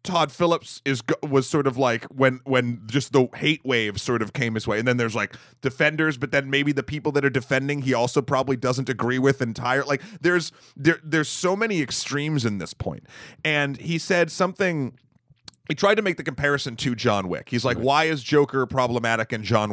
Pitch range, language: 115-145 Hz, English